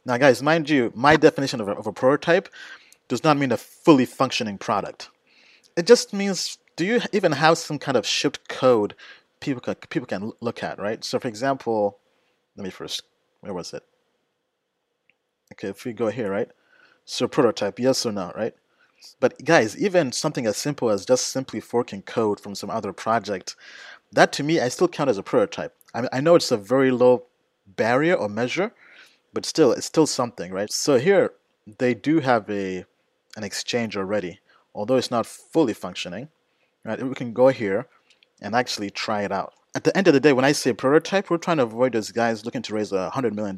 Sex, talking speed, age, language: male, 200 wpm, 30-49, English